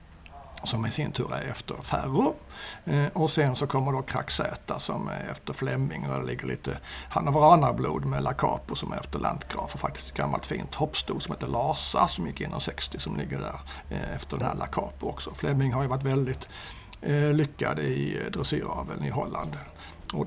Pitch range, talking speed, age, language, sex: 95-150 Hz, 180 wpm, 60-79, Swedish, male